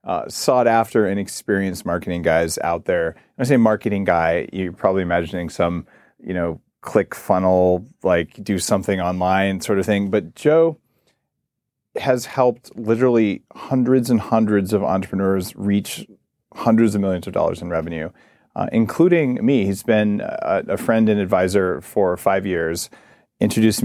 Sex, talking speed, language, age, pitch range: male, 150 wpm, English, 30-49, 95-115 Hz